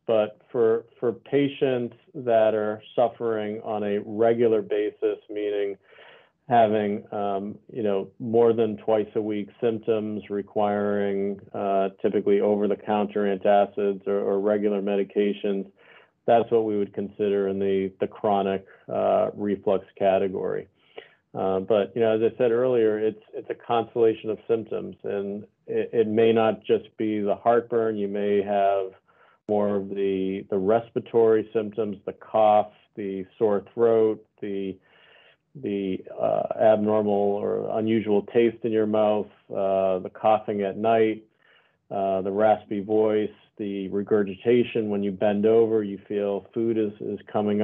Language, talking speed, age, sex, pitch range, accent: English, 140 wpm, 40-59, male, 100-115 Hz, American